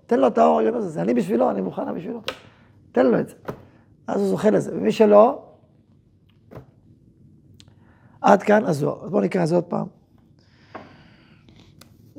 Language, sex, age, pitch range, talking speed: Hebrew, male, 40-59, 160-215 Hz, 150 wpm